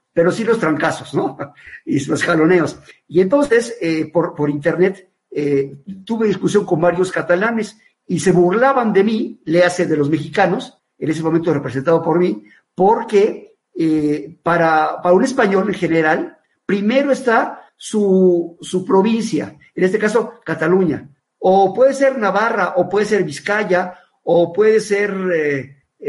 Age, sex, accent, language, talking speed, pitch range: 50-69, male, Mexican, Spanish, 150 wpm, 170-220 Hz